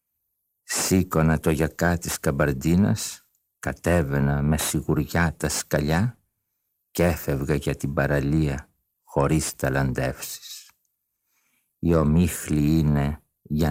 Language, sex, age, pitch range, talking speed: Greek, male, 50-69, 75-90 Hz, 90 wpm